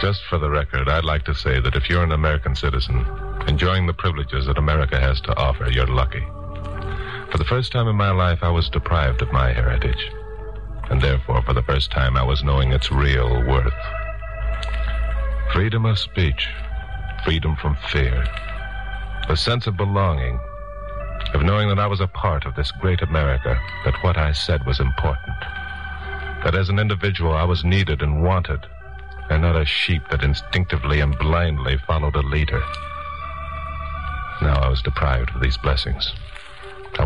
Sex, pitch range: male, 70-95 Hz